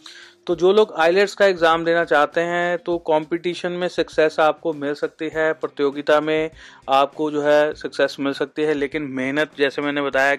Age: 30-49